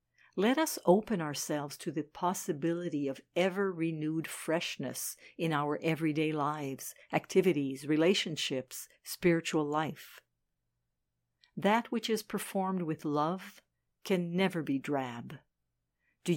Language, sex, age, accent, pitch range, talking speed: English, female, 60-79, American, 145-185 Hz, 105 wpm